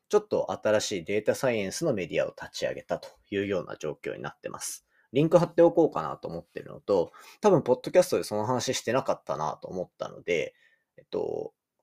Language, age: Japanese, 30-49